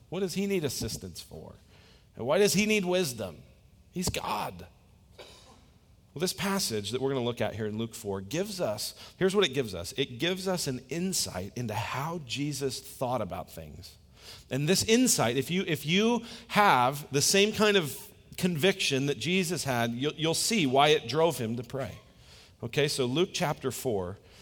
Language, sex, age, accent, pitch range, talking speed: English, male, 40-59, American, 120-195 Hz, 185 wpm